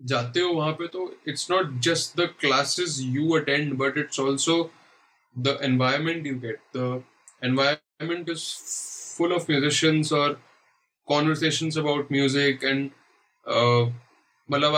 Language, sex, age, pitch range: Urdu, male, 20-39, 130-165 Hz